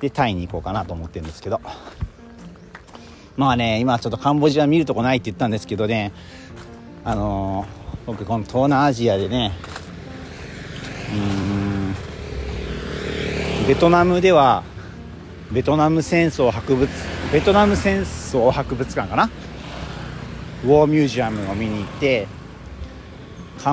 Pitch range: 90-130 Hz